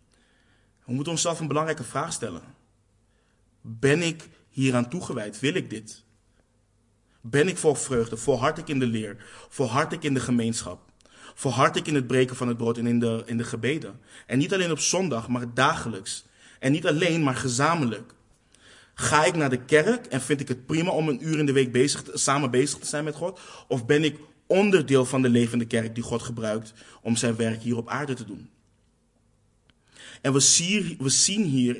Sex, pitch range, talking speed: male, 115-140 Hz, 195 wpm